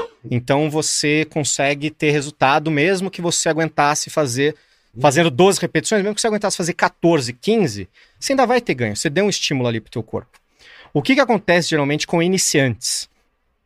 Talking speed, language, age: 175 wpm, Portuguese, 30-49